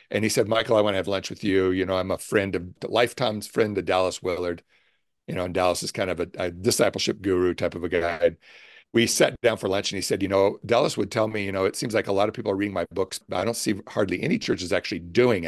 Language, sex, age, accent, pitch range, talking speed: English, male, 50-69, American, 95-115 Hz, 285 wpm